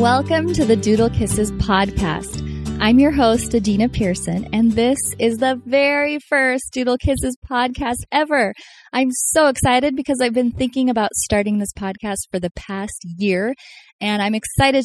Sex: female